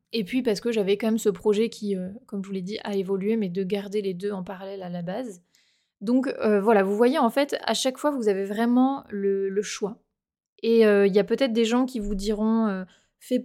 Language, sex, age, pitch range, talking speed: French, female, 20-39, 200-240 Hz, 245 wpm